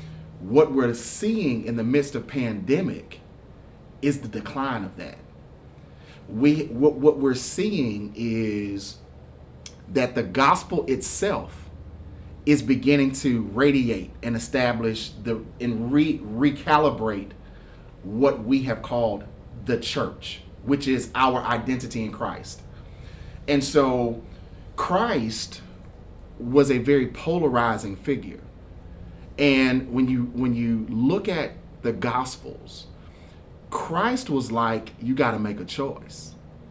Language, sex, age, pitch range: English, male, 30-49, 110-140 Hz